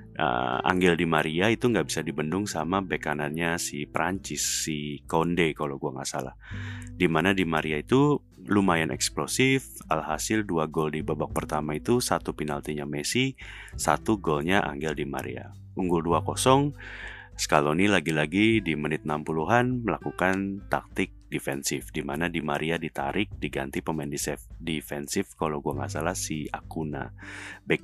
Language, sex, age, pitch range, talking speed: Indonesian, male, 30-49, 75-100 Hz, 140 wpm